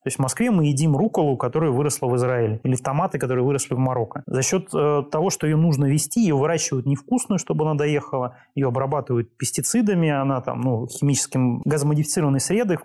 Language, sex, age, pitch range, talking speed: Russian, male, 30-49, 130-160 Hz, 190 wpm